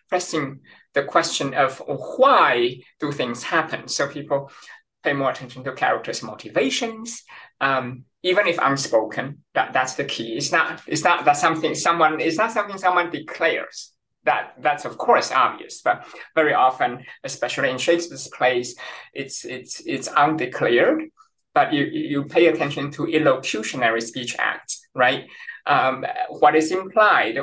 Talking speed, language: 145 wpm, English